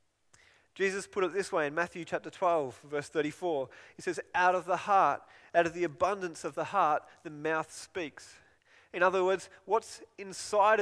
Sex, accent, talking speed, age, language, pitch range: male, Australian, 180 wpm, 30-49, English, 160-195 Hz